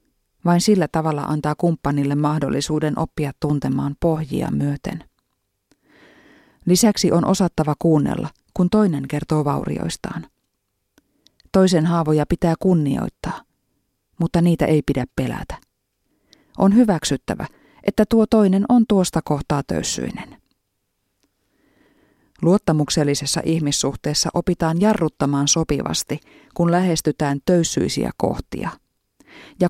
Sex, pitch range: female, 145-185 Hz